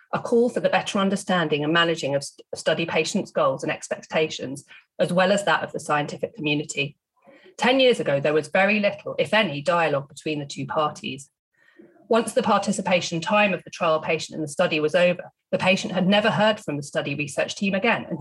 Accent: British